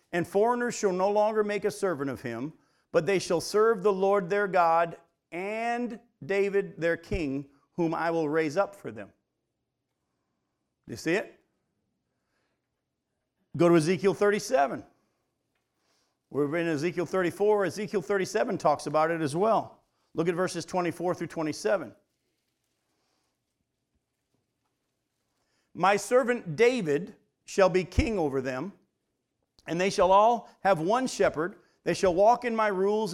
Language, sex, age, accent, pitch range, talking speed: English, male, 50-69, American, 160-205 Hz, 135 wpm